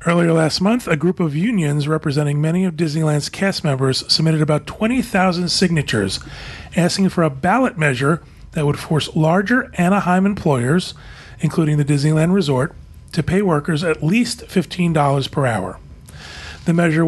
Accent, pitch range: American, 145-175 Hz